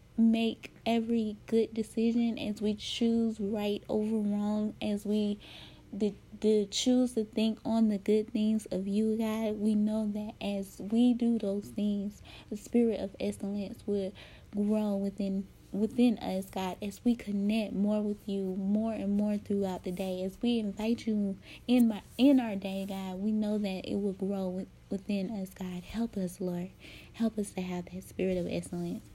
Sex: female